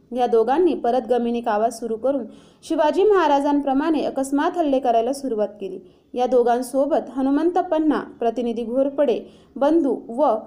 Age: 20-39